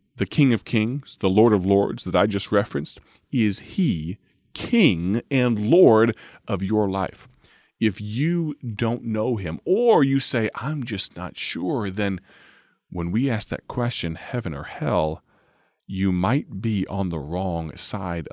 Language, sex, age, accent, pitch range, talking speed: English, male, 30-49, American, 95-125 Hz, 155 wpm